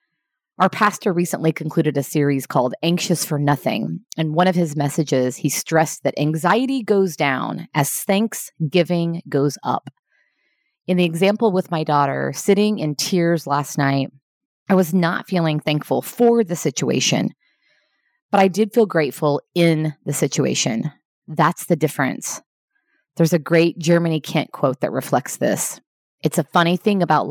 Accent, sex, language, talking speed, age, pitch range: American, female, English, 155 wpm, 30-49, 155-200 Hz